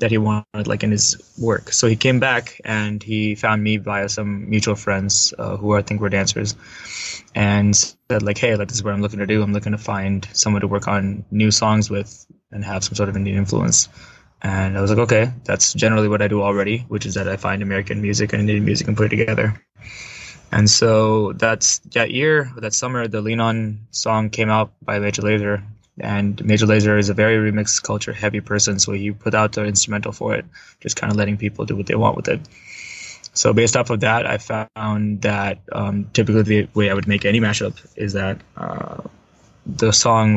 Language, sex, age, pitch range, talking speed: English, male, 20-39, 100-110 Hz, 220 wpm